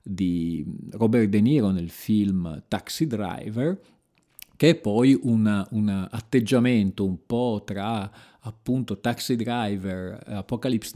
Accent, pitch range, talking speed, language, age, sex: native, 100-120 Hz, 110 wpm, Italian, 40-59, male